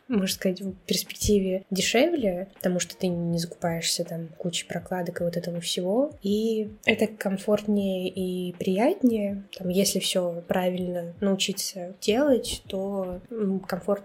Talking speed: 130 wpm